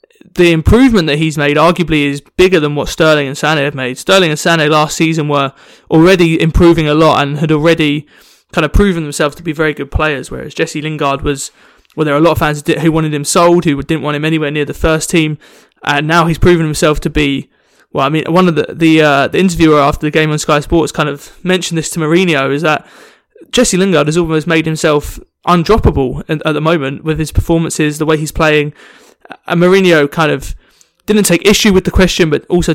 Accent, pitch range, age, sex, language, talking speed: British, 150-175 Hz, 20-39, male, English, 225 wpm